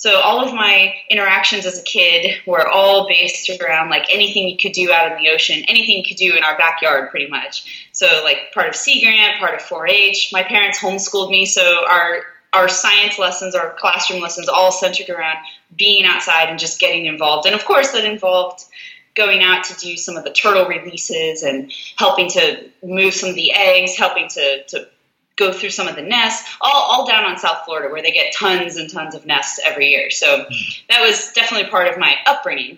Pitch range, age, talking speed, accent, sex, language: 175-220 Hz, 20-39, 210 wpm, American, female, English